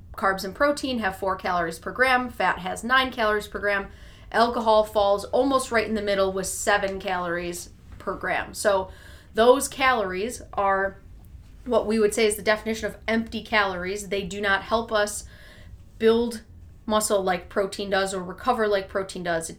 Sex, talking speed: female, 170 wpm